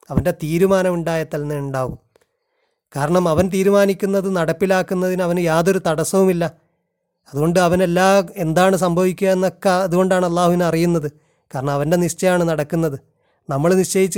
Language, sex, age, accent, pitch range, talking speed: Malayalam, male, 30-49, native, 150-185 Hz, 110 wpm